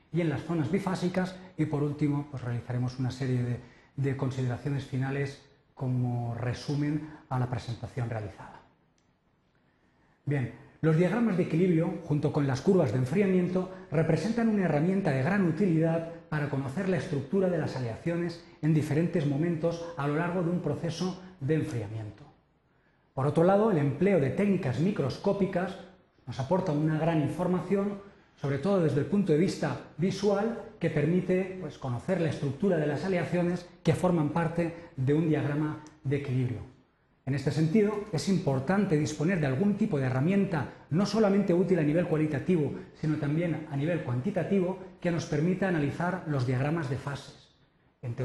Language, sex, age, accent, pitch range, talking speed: Spanish, male, 30-49, Spanish, 140-185 Hz, 155 wpm